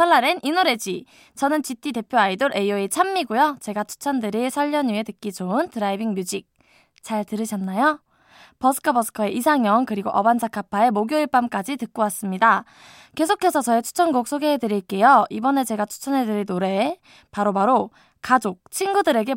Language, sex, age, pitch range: Korean, female, 20-39, 205-280 Hz